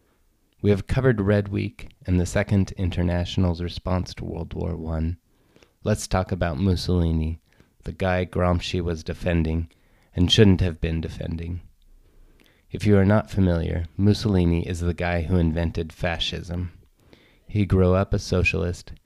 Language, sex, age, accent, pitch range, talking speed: English, male, 30-49, American, 85-100 Hz, 140 wpm